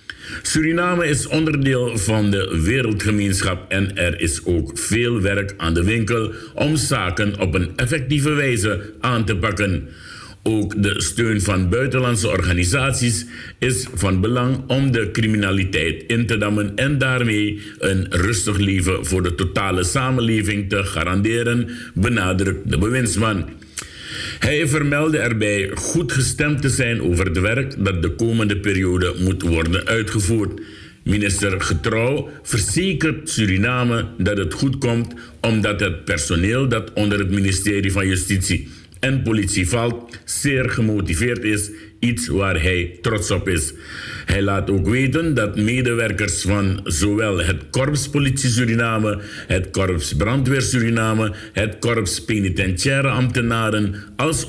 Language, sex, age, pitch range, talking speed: Dutch, male, 60-79, 95-120 Hz, 130 wpm